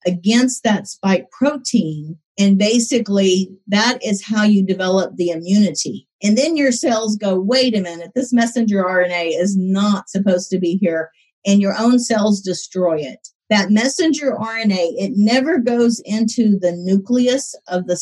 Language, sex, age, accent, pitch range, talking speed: English, female, 50-69, American, 190-235 Hz, 155 wpm